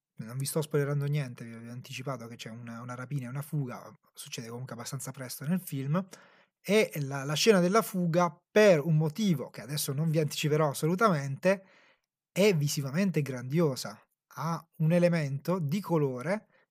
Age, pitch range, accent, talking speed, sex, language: 30-49, 135-180 Hz, native, 160 wpm, male, Italian